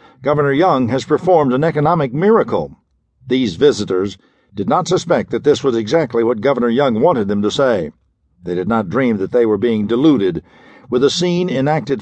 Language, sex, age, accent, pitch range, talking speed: English, male, 60-79, American, 115-150 Hz, 180 wpm